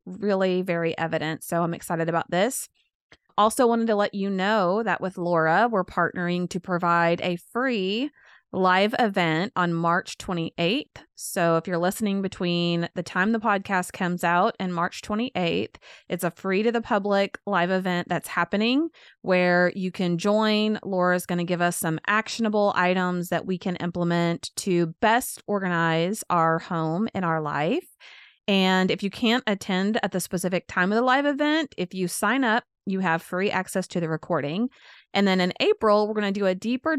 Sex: female